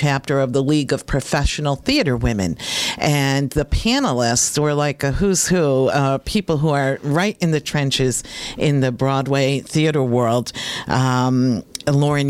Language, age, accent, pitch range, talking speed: English, 50-69, American, 130-150 Hz, 150 wpm